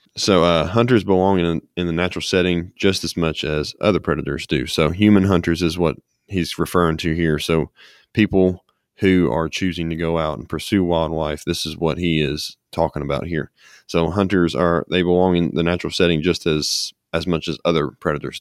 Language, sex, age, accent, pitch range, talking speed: English, male, 20-39, American, 80-90 Hz, 195 wpm